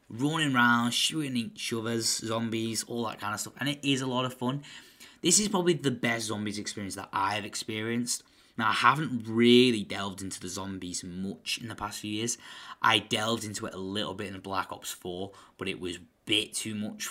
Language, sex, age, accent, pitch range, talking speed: English, male, 10-29, British, 100-130 Hz, 210 wpm